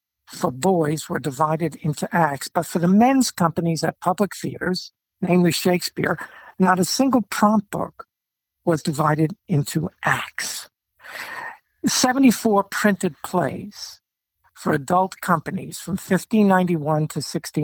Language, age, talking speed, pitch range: English, 60-79, 115 wpm, 155-200 Hz